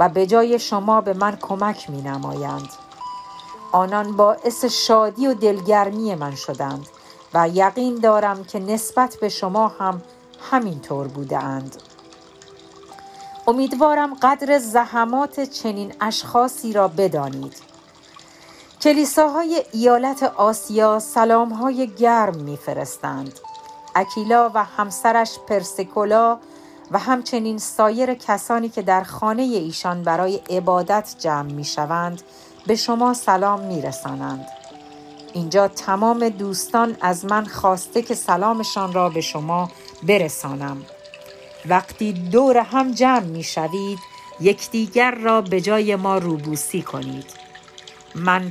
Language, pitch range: Persian, 175-235 Hz